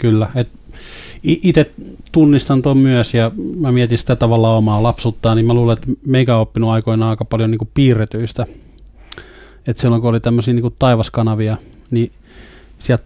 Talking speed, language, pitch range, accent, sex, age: 150 wpm, Finnish, 115-125 Hz, native, male, 20-39